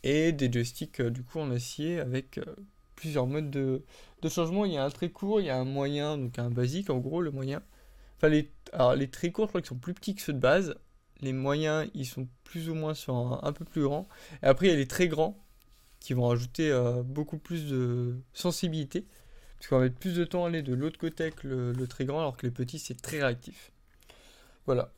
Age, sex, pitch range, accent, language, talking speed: 20-39, male, 130-165 Hz, French, French, 245 wpm